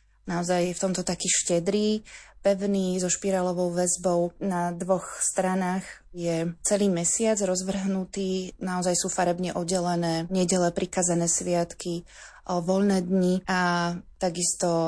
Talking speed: 115 wpm